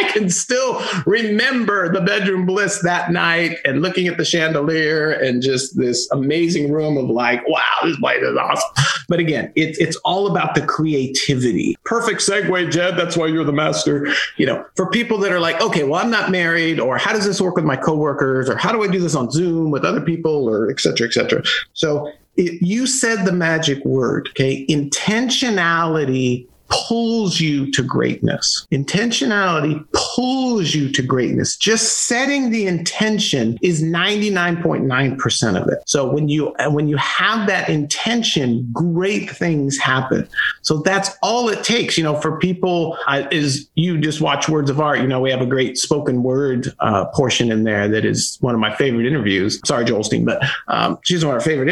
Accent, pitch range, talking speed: American, 145-195 Hz, 185 wpm